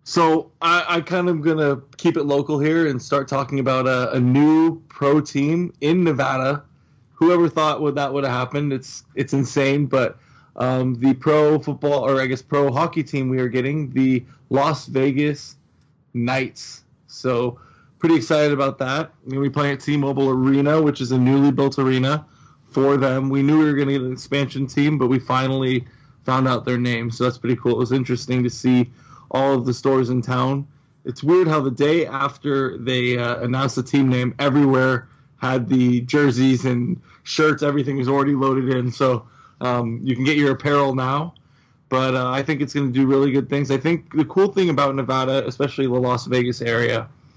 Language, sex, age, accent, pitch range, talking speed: English, male, 20-39, American, 130-145 Hz, 200 wpm